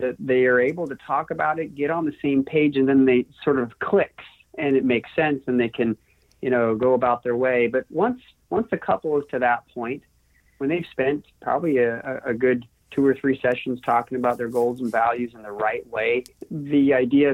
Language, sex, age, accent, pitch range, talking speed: English, male, 40-59, American, 120-140 Hz, 220 wpm